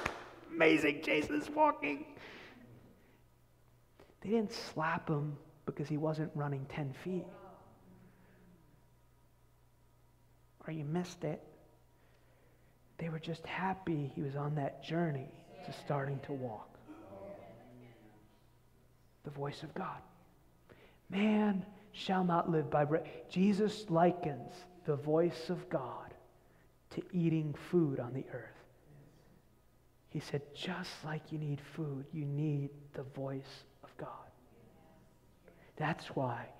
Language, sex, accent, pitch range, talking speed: English, male, American, 140-190 Hz, 110 wpm